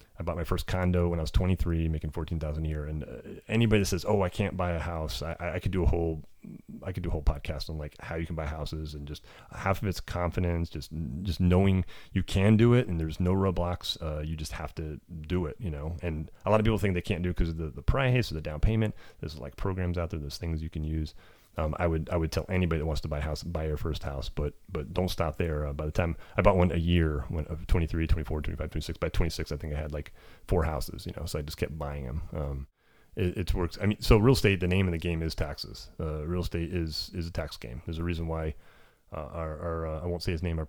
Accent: American